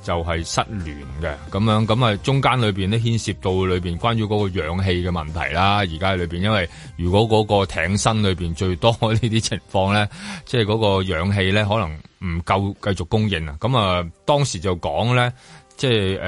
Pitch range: 90-115 Hz